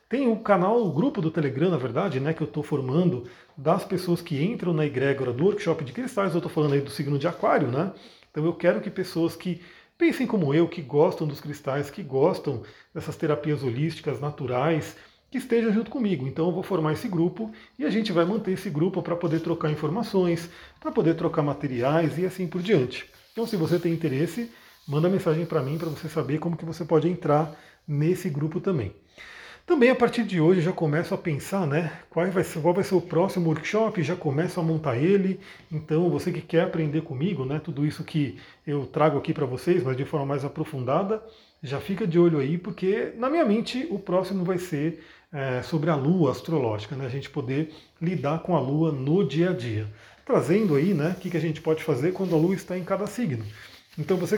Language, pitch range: Portuguese, 150-185 Hz